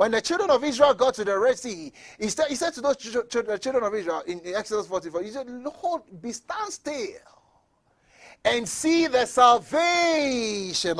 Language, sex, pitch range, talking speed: English, male, 230-315 Hz, 165 wpm